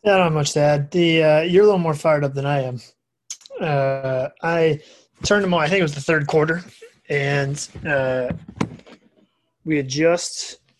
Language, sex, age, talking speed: English, male, 20-39, 190 wpm